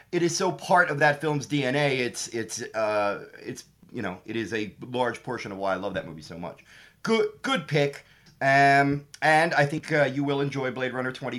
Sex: male